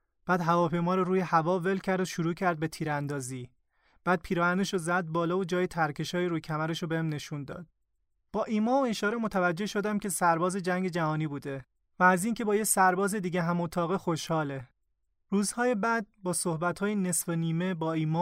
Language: Persian